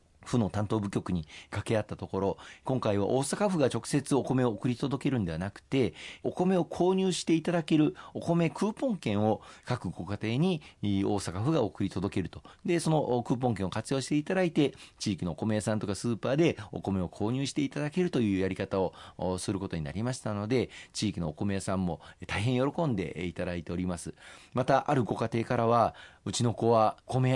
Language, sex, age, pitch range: Japanese, male, 40-59, 95-130 Hz